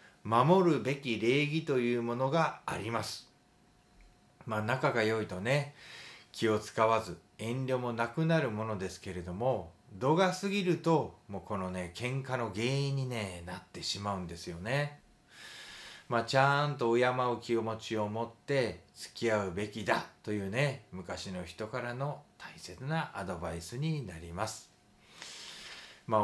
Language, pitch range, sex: Japanese, 95-130 Hz, male